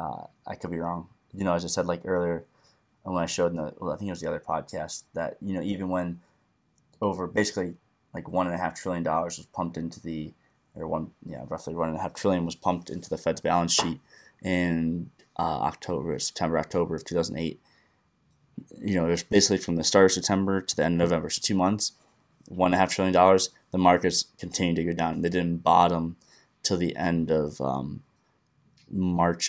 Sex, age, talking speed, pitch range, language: male, 20-39, 215 wpm, 85-90 Hz, English